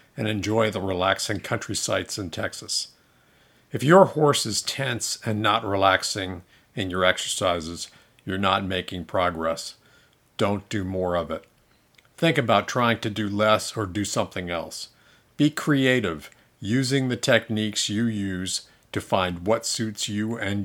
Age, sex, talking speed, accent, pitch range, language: 50-69, male, 145 wpm, American, 100-125 Hz, English